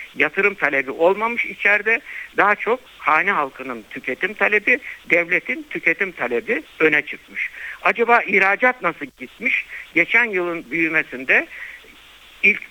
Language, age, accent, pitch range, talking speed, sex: Turkish, 60-79, native, 145-225 Hz, 110 wpm, male